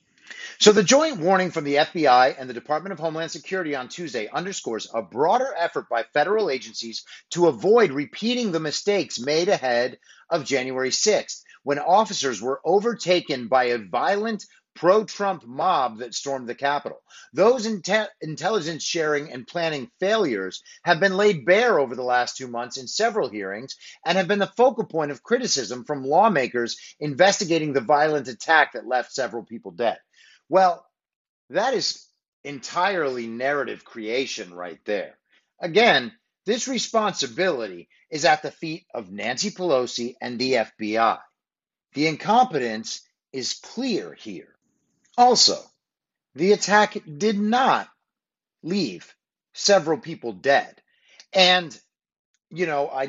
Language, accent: English, American